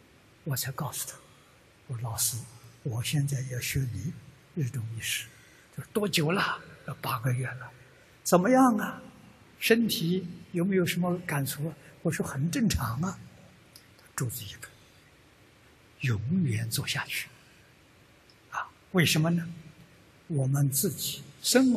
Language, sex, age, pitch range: Chinese, male, 60-79, 125-165 Hz